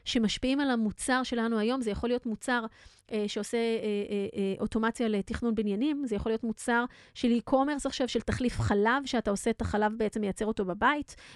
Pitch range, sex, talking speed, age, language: 215-265 Hz, female, 180 wpm, 30-49, Hebrew